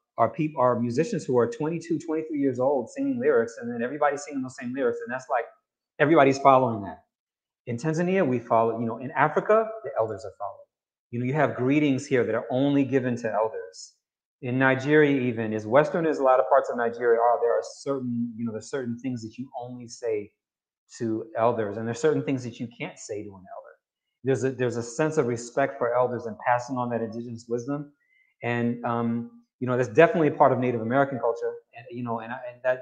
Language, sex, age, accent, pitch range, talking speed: English, male, 30-49, American, 115-145 Hz, 220 wpm